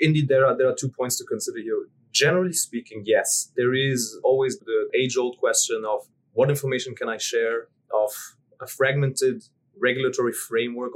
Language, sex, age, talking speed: English, male, 30-49, 165 wpm